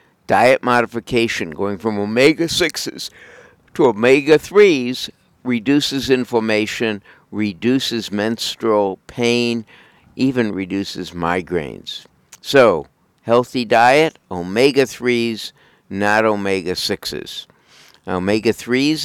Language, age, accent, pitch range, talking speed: English, 60-79, American, 100-120 Hz, 70 wpm